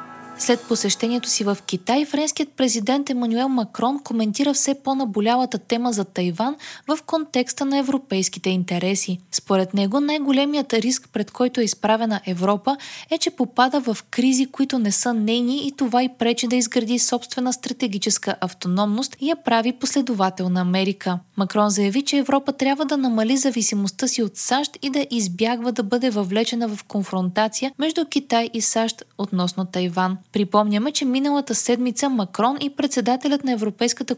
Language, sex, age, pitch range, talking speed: Bulgarian, female, 20-39, 200-265 Hz, 150 wpm